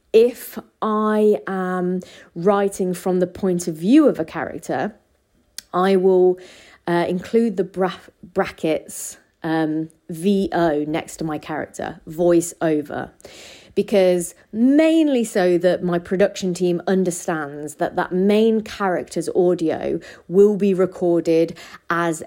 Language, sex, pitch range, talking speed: English, female, 165-195 Hz, 115 wpm